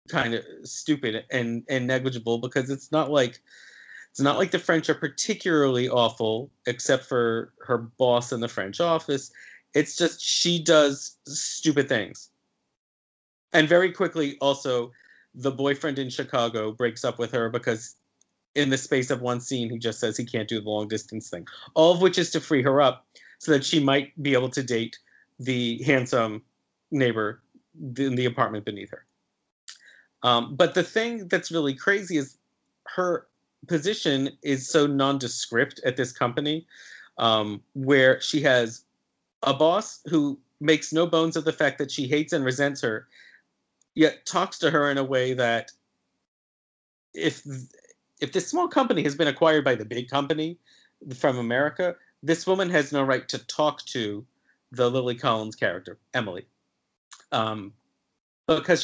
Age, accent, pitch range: 30-49, American, 120-155 Hz